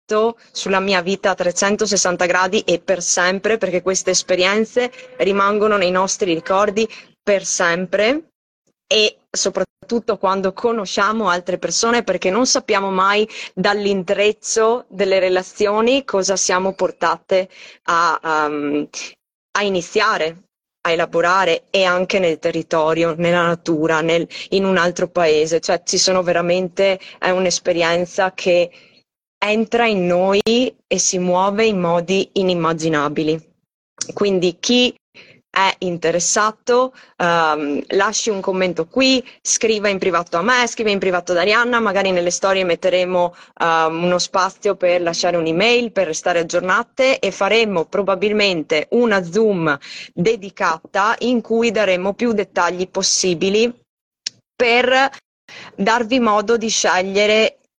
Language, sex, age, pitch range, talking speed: Italian, female, 20-39, 175-215 Hz, 120 wpm